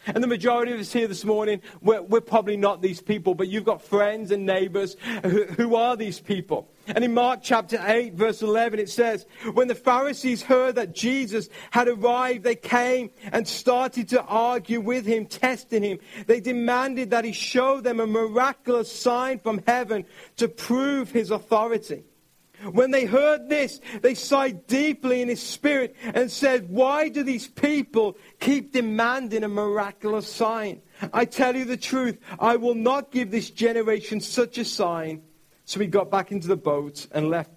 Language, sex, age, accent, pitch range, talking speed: English, male, 40-59, British, 205-255 Hz, 175 wpm